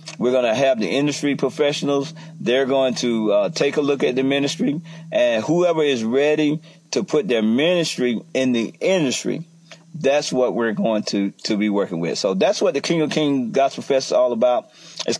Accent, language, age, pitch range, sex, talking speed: American, English, 40-59, 130-170 Hz, male, 195 wpm